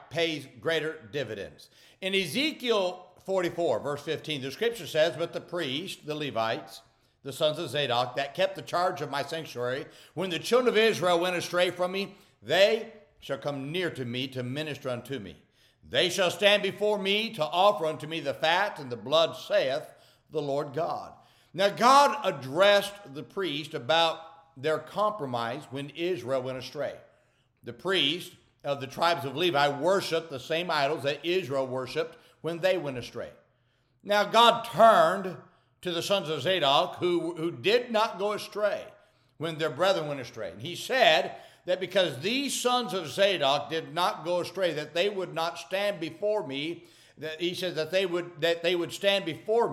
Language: English